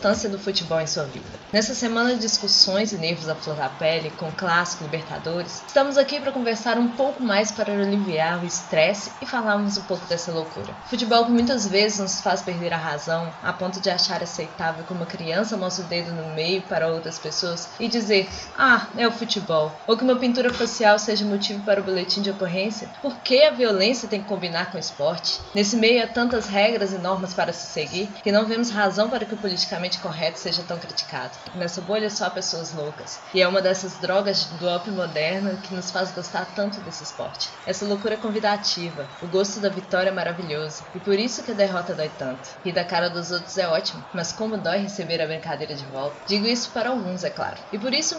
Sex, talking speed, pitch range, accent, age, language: female, 210 wpm, 175-220 Hz, Brazilian, 20-39, Portuguese